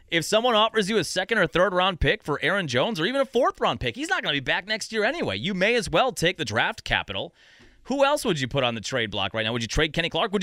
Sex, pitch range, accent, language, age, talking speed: male, 130-200 Hz, American, English, 30-49, 295 wpm